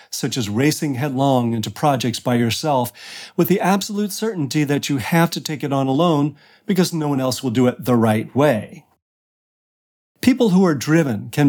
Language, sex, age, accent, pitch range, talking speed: English, male, 40-59, American, 125-170 Hz, 185 wpm